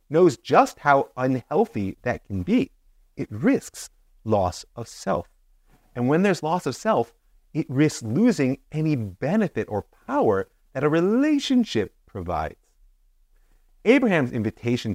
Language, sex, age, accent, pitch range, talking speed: English, male, 30-49, American, 110-180 Hz, 125 wpm